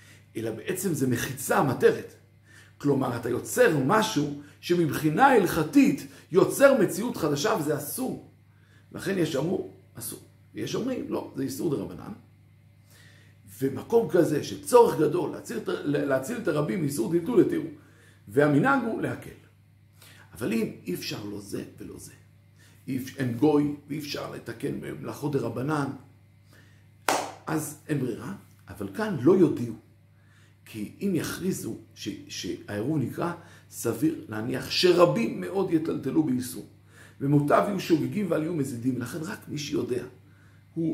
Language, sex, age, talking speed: Hebrew, male, 50-69, 125 wpm